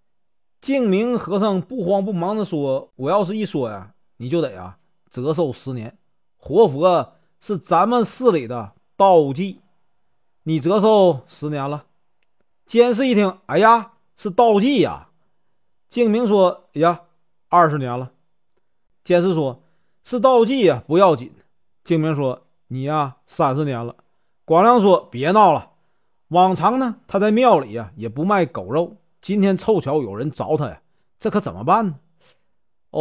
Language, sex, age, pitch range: Chinese, male, 40-59, 140-200 Hz